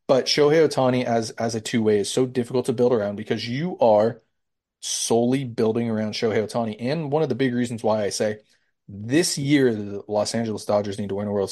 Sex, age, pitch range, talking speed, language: male, 30-49, 105-130 Hz, 220 wpm, English